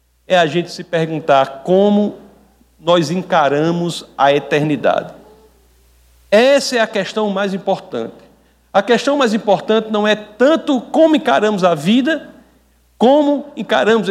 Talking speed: 125 wpm